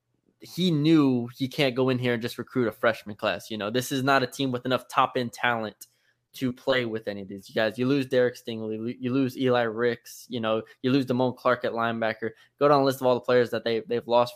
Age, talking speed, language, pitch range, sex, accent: 20-39, 255 wpm, English, 115-130 Hz, male, American